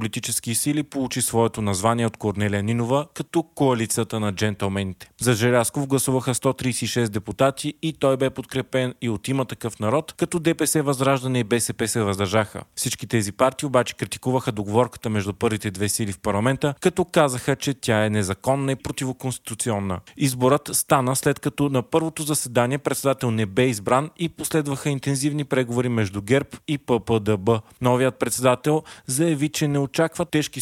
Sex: male